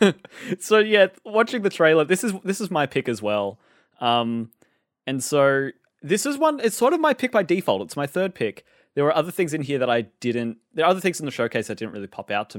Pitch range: 105-160 Hz